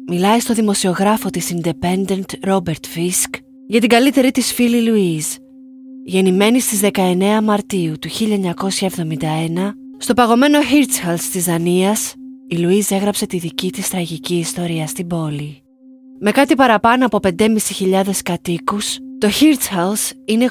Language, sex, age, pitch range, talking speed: Greek, female, 20-39, 170-235 Hz, 125 wpm